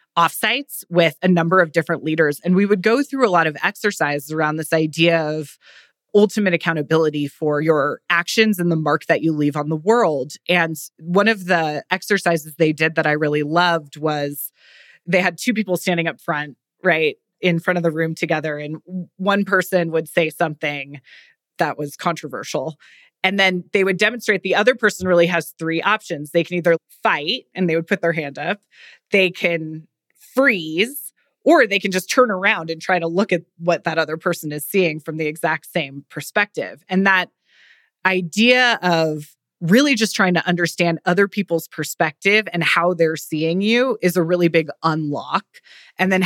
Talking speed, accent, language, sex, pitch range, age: 185 wpm, American, English, female, 160-190 Hz, 20-39